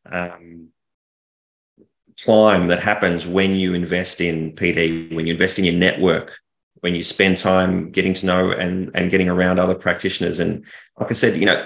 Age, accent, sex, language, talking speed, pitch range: 30-49, Australian, male, English, 175 wpm, 90-100 Hz